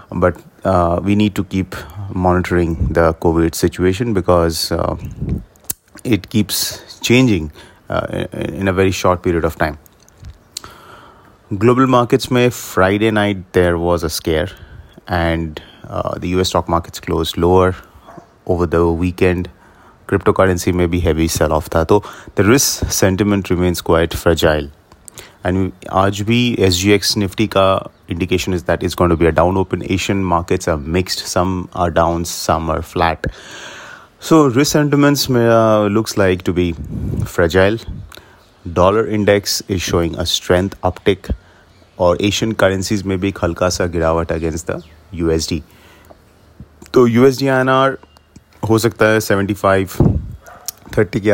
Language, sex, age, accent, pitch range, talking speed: English, male, 30-49, Indian, 85-105 Hz, 130 wpm